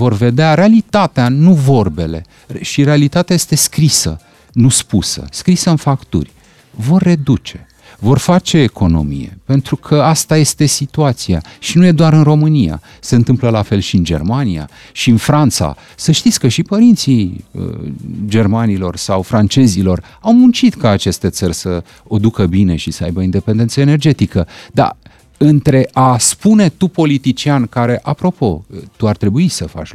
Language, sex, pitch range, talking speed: Romanian, male, 95-150 Hz, 150 wpm